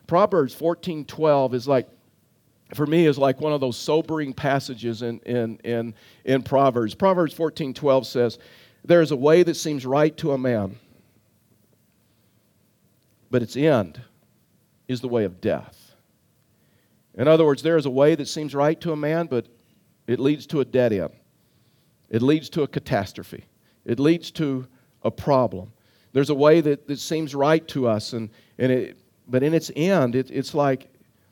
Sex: male